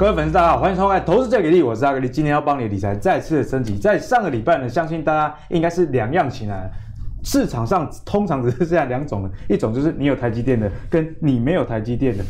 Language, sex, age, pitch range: Chinese, male, 20-39, 115-160 Hz